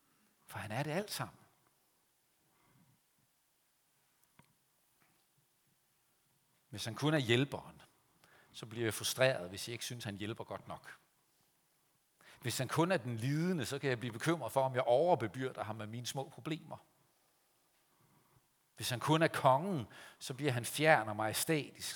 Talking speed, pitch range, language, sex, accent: 150 wpm, 120-155 Hz, Danish, male, native